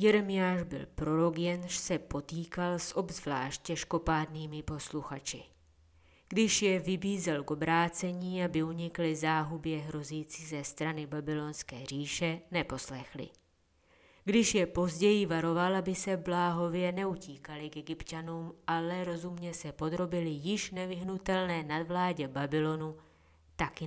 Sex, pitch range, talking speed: female, 150-180 Hz, 110 wpm